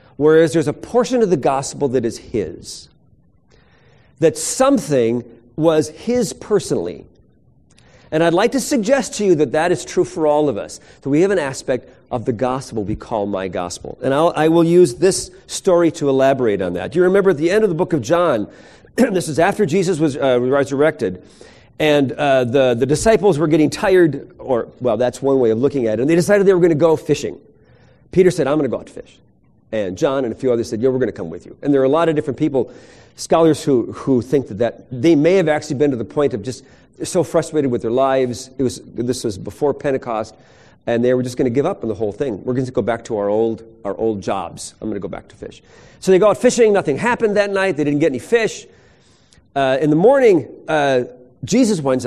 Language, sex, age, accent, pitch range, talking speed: English, male, 40-59, American, 125-175 Hz, 235 wpm